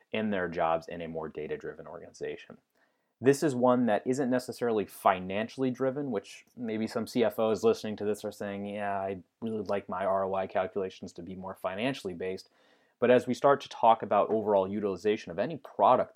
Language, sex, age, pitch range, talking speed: English, male, 30-49, 95-125 Hz, 185 wpm